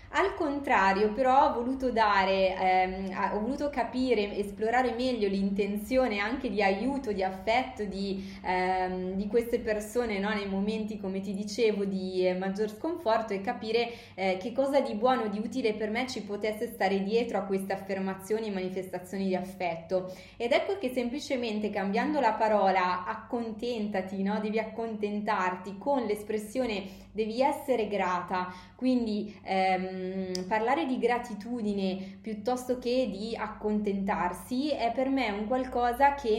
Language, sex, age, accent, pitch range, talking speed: Italian, female, 20-39, native, 195-245 Hz, 140 wpm